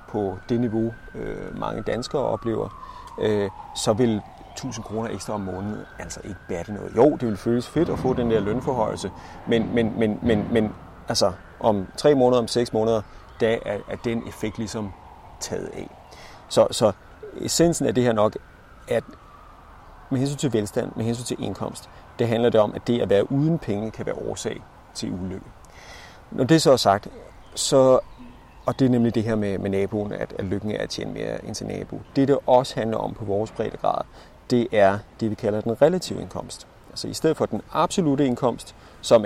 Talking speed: 200 wpm